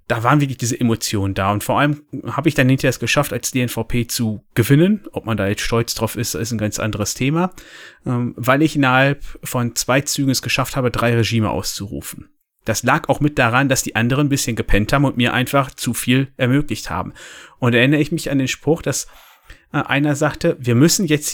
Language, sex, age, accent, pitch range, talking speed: German, male, 30-49, German, 120-160 Hz, 215 wpm